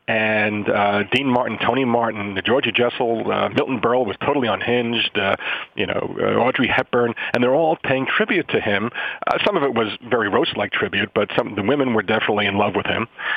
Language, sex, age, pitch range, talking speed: English, male, 40-59, 110-130 Hz, 210 wpm